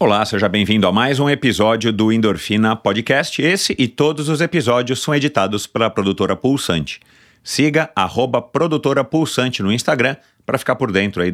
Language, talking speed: Portuguese, 165 wpm